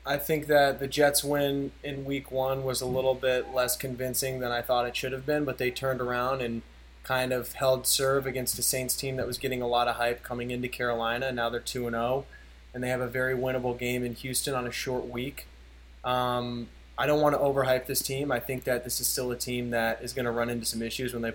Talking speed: 245 wpm